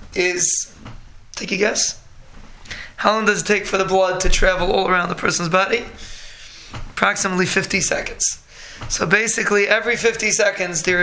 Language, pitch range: English, 180-215 Hz